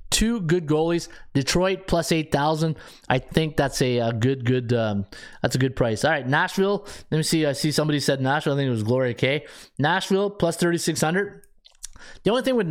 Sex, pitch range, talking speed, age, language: male, 130-175 Hz, 210 wpm, 20-39, English